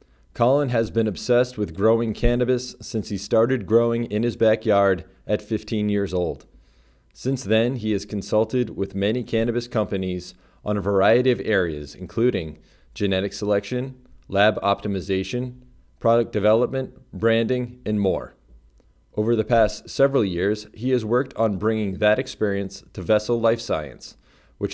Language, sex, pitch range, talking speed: English, male, 95-120 Hz, 145 wpm